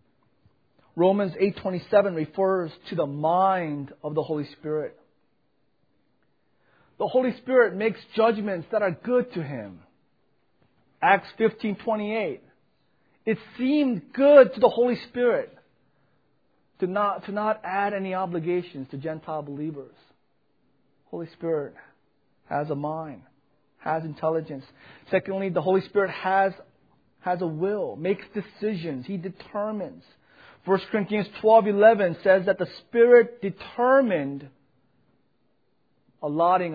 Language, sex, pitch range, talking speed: English, male, 150-205 Hz, 115 wpm